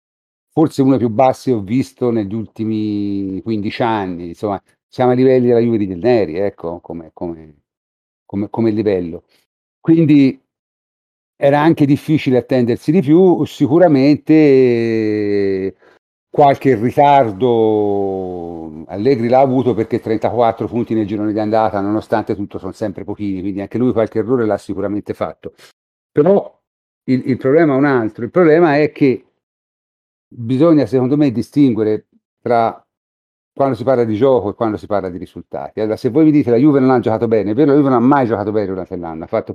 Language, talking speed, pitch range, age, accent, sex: Italian, 170 wpm, 100-130 Hz, 50-69, native, male